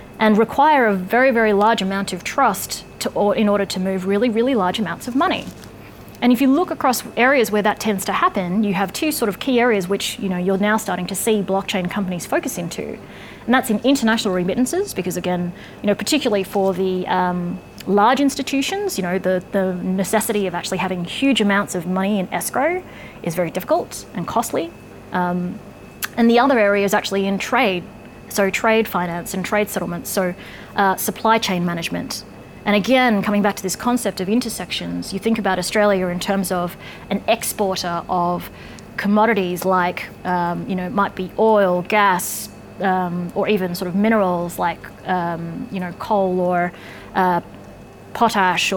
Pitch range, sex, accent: 185-220 Hz, female, Australian